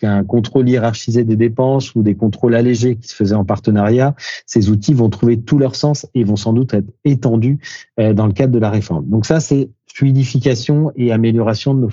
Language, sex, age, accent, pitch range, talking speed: French, male, 40-59, French, 100-130 Hz, 205 wpm